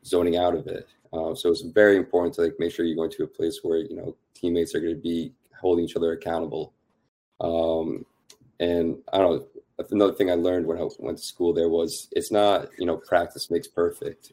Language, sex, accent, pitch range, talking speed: English, male, American, 85-105 Hz, 220 wpm